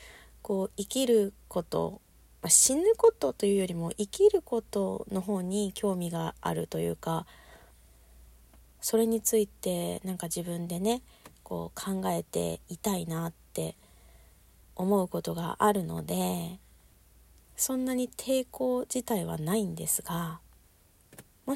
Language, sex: Japanese, female